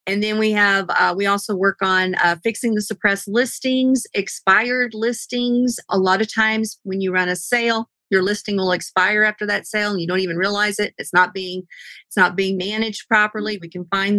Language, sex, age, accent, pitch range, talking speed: English, female, 40-59, American, 190-220 Hz, 205 wpm